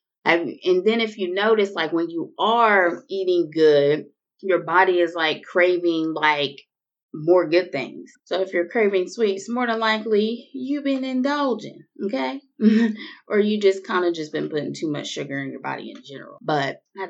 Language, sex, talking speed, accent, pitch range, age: English, female, 180 wpm, American, 155-225 Hz, 20-39